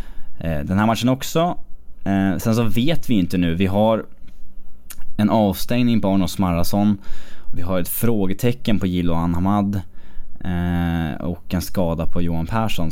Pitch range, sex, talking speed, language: 85-110 Hz, male, 155 wpm, English